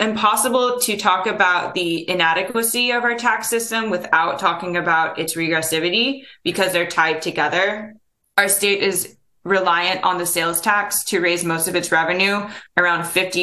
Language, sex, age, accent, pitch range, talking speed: English, female, 20-39, American, 170-205 Hz, 150 wpm